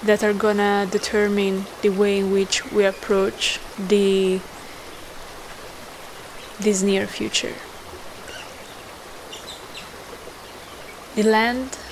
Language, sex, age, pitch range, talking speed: English, female, 20-39, 190-210 Hz, 80 wpm